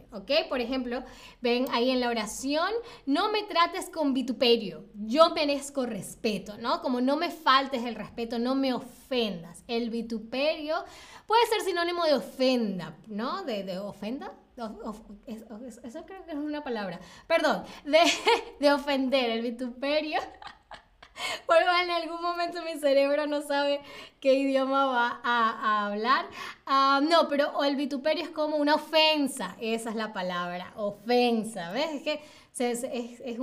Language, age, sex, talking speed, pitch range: Spanish, 10-29, female, 155 wpm, 240-330 Hz